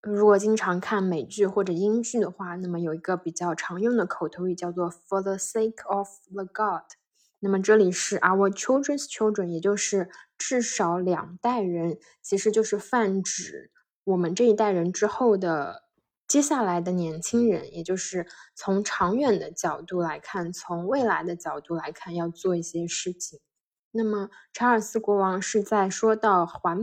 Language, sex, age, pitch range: Chinese, female, 10-29, 175-215 Hz